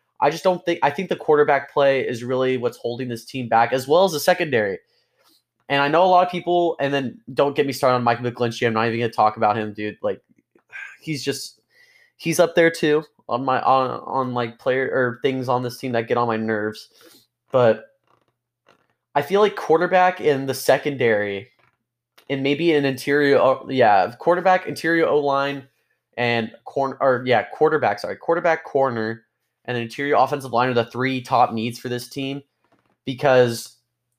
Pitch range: 120-150 Hz